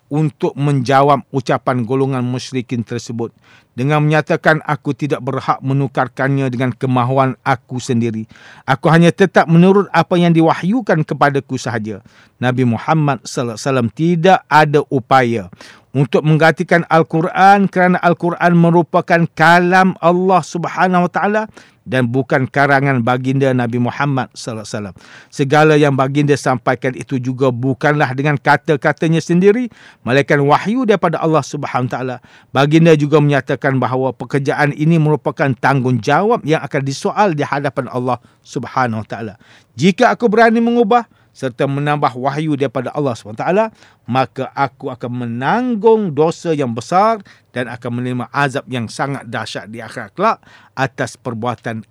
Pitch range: 125-160 Hz